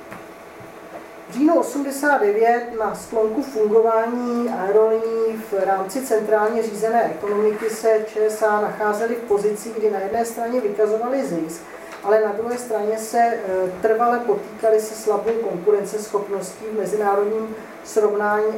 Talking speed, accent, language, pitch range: 115 wpm, native, Czech, 200-225 Hz